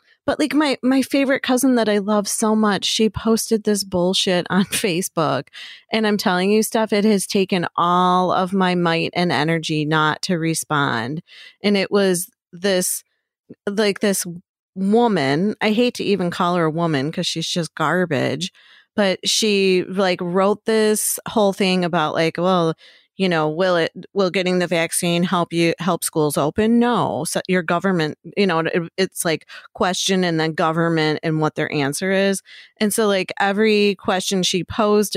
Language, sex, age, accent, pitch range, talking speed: English, female, 30-49, American, 165-205 Hz, 170 wpm